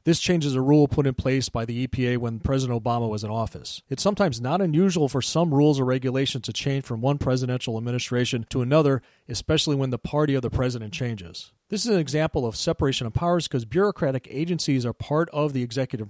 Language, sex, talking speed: English, male, 215 wpm